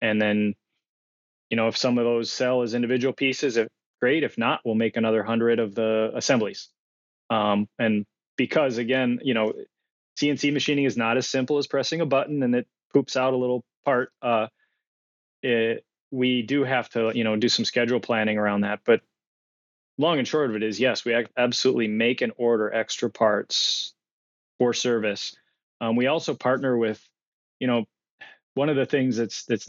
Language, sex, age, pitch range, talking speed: English, male, 20-39, 110-125 Hz, 180 wpm